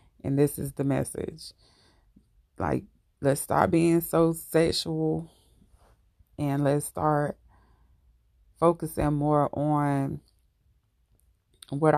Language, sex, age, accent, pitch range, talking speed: English, female, 30-49, American, 135-160 Hz, 90 wpm